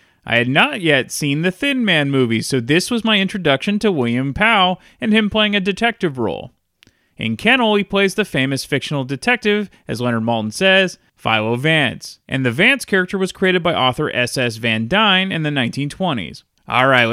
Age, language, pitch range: 30-49, English, 130-205 Hz